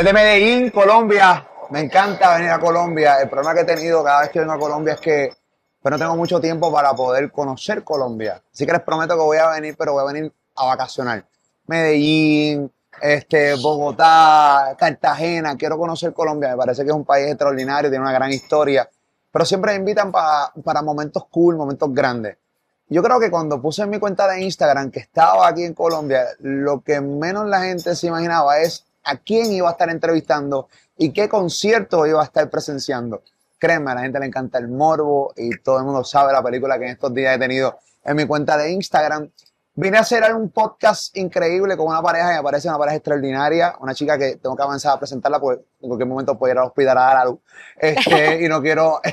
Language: Spanish